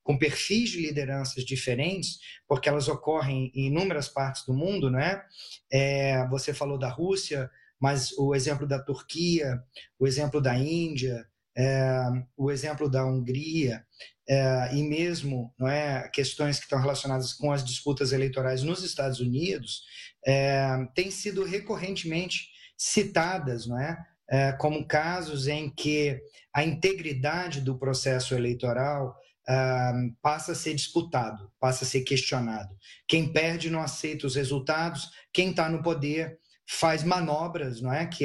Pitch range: 130-160 Hz